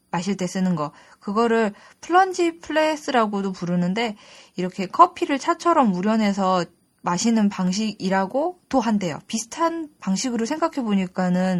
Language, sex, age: Korean, female, 20-39